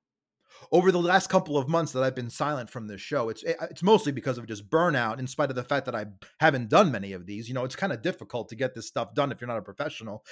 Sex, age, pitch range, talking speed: male, 30-49, 125-165 Hz, 280 wpm